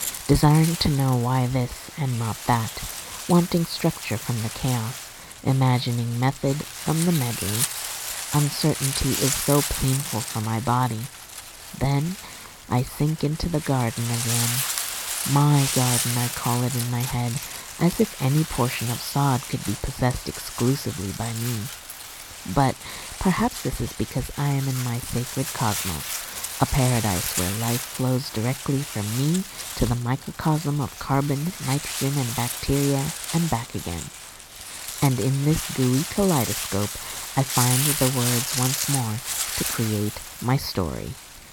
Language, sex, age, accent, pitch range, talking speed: English, female, 50-69, American, 115-140 Hz, 140 wpm